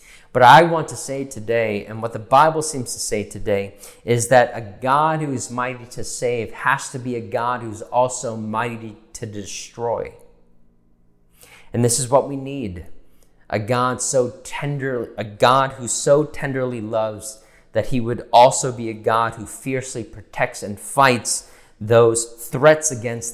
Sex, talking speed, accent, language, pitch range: male, 165 wpm, American, English, 110-135 Hz